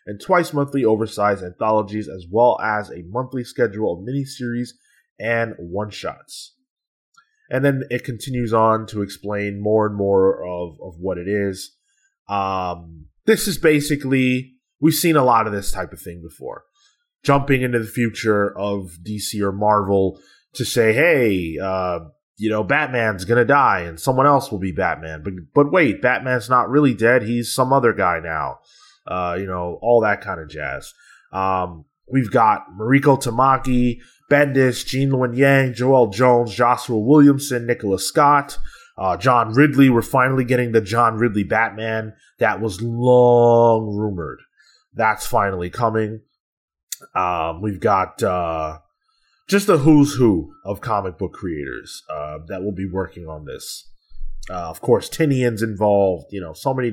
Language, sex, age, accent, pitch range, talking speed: English, male, 20-39, American, 100-130 Hz, 155 wpm